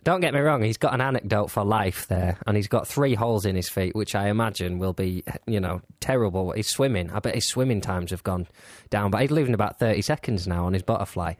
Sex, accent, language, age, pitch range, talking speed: male, British, English, 20-39, 95-120 Hz, 245 wpm